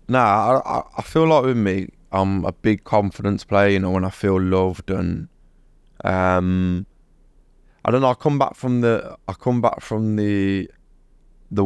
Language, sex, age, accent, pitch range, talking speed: English, male, 20-39, British, 90-100 Hz, 180 wpm